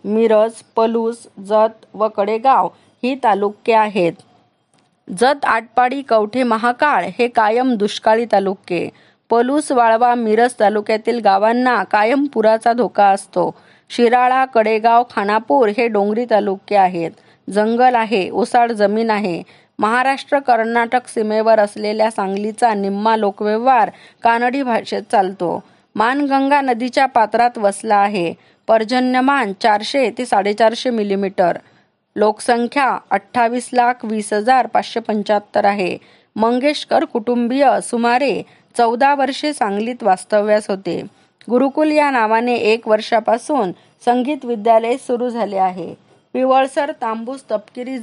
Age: 20-39